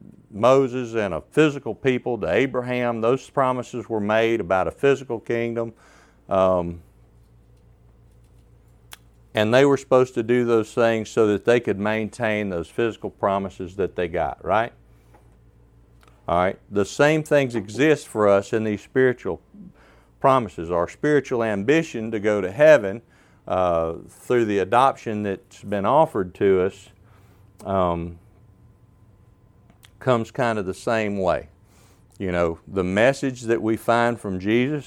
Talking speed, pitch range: 135 wpm, 100-120 Hz